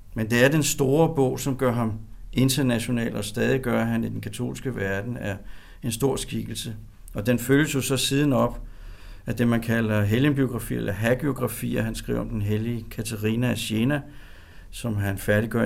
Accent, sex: native, male